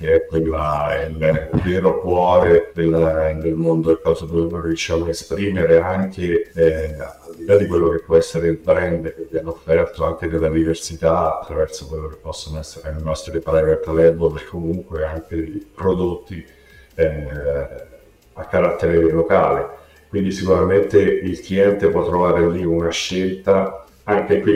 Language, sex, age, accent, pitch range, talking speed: Italian, male, 50-69, native, 80-100 Hz, 160 wpm